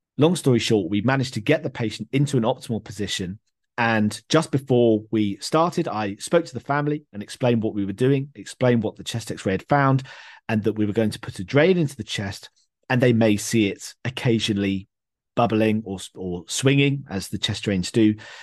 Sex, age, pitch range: male, 40-59, 100-125 Hz